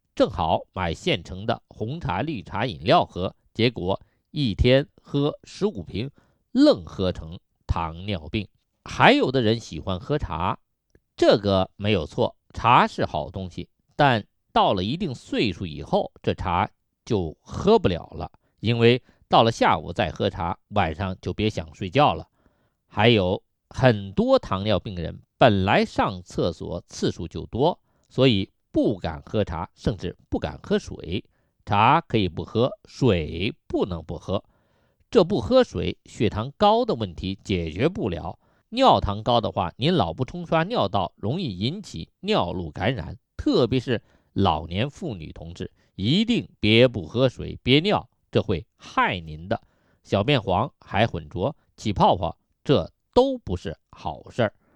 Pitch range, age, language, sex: 90-130 Hz, 50-69, Chinese, male